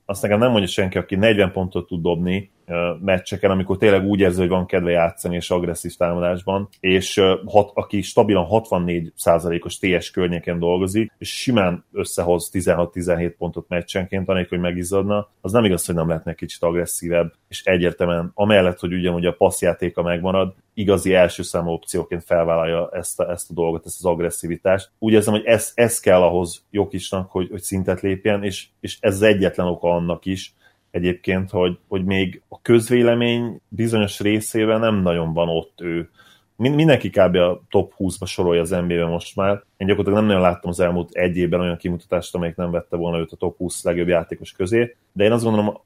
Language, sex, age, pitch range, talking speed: Hungarian, male, 30-49, 85-100 Hz, 180 wpm